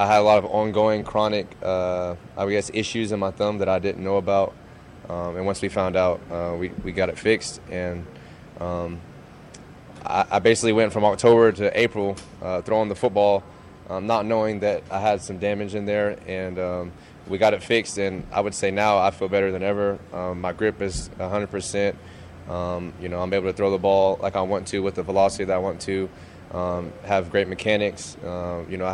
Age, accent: 20-39, American